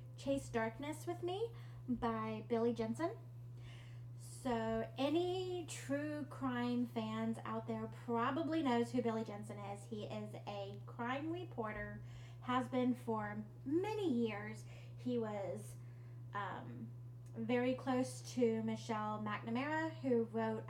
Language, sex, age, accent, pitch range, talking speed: English, female, 30-49, American, 115-125 Hz, 115 wpm